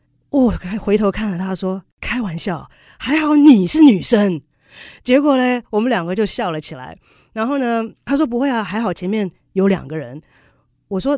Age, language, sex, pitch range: 30-49, Chinese, female, 165-220 Hz